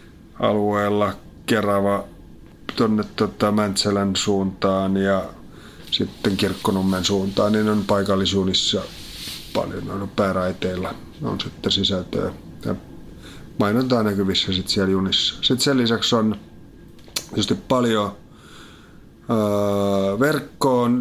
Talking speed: 85 wpm